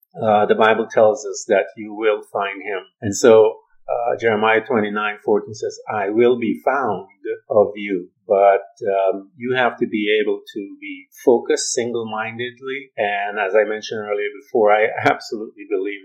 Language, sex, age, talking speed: English, male, 50-69, 160 wpm